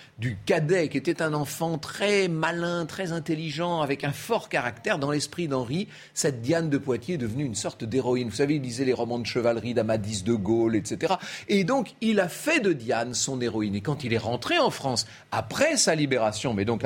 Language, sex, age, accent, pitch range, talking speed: French, male, 40-59, French, 120-190 Hz, 210 wpm